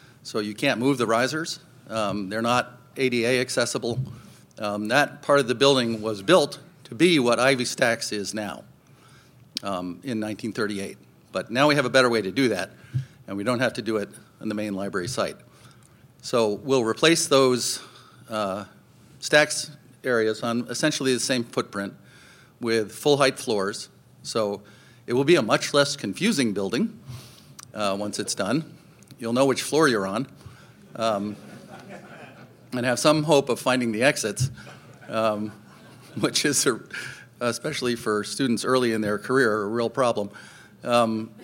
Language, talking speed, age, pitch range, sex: English, 160 wpm, 50-69, 110-135 Hz, male